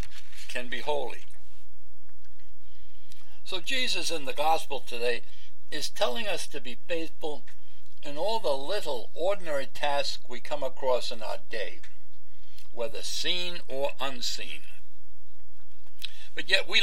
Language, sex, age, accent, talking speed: English, male, 60-79, American, 120 wpm